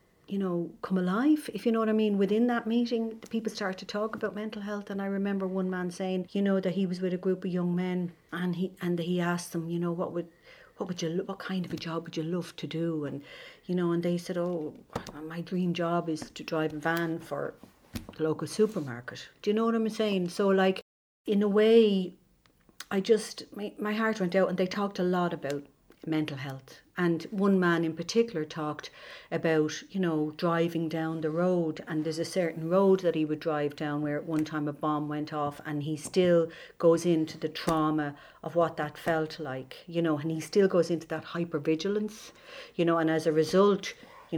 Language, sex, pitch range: English, female, 160-200 Hz